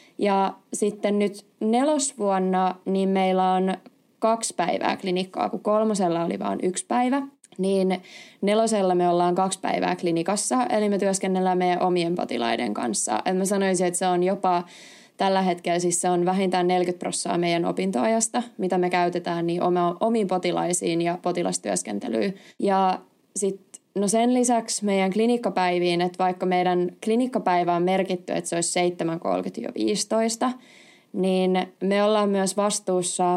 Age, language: 20-39, Finnish